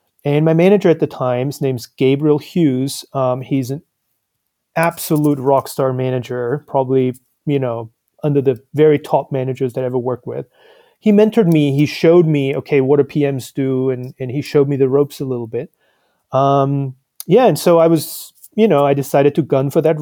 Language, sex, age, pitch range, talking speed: Italian, male, 30-49, 130-155 Hz, 190 wpm